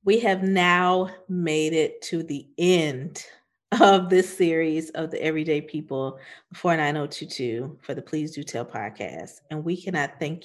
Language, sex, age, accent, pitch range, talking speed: English, female, 40-59, American, 150-180 Hz, 150 wpm